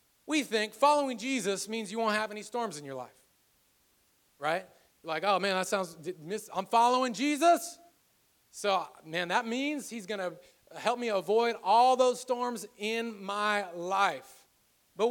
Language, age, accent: English, 30-49, American